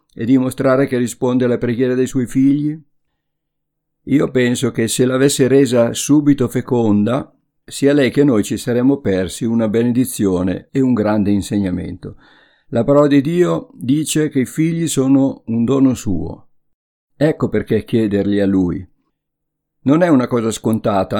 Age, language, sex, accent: 50-69, Italian, male, native